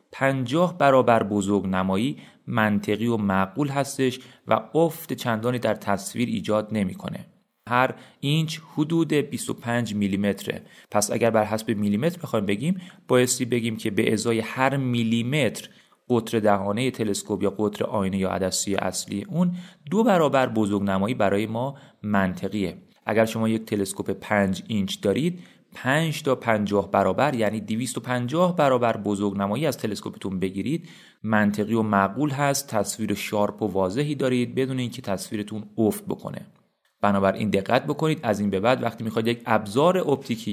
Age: 30-49